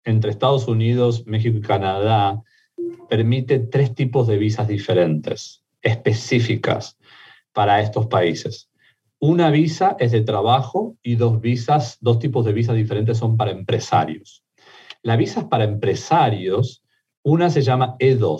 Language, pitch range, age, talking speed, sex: Spanish, 110-135 Hz, 40-59, 135 wpm, male